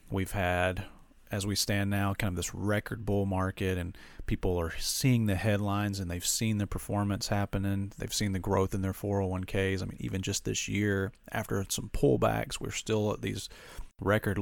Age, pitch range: 40-59, 95-110 Hz